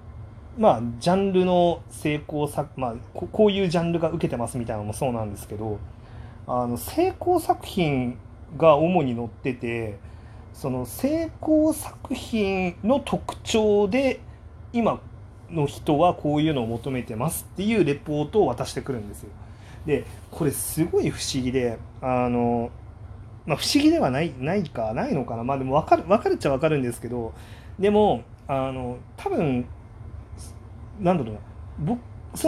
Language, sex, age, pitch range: Japanese, male, 30-49, 110-175 Hz